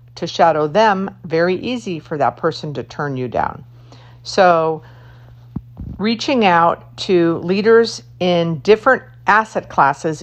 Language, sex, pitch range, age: English, female, 135-195 Hz, 50-69